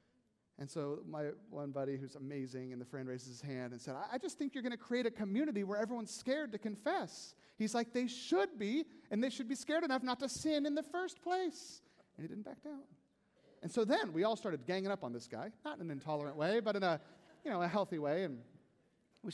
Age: 30-49